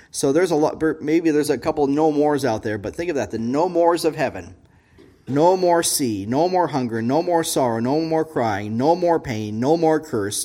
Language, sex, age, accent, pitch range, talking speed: English, male, 40-59, American, 125-165 Hz, 230 wpm